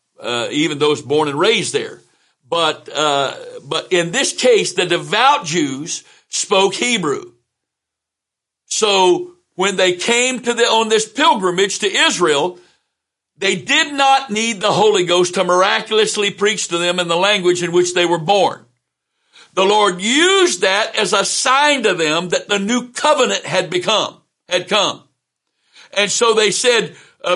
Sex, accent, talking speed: male, American, 155 wpm